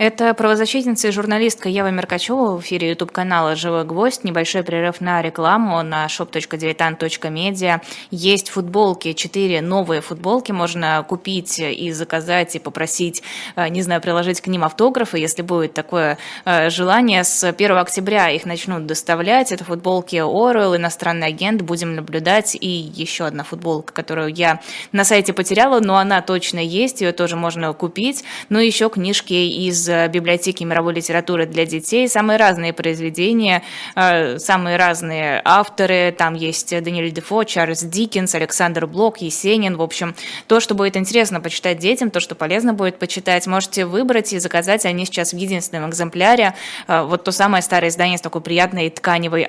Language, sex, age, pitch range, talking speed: Russian, female, 20-39, 165-195 Hz, 150 wpm